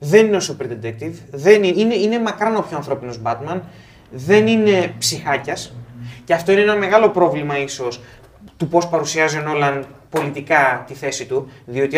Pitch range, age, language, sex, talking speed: 120-195 Hz, 30-49, Greek, male, 165 wpm